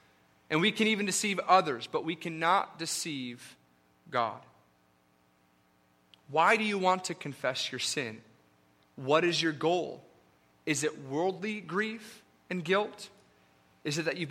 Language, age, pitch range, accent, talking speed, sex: English, 30-49, 140-200 Hz, American, 140 wpm, male